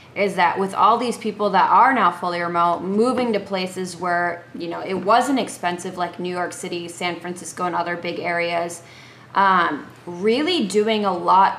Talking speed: 180 wpm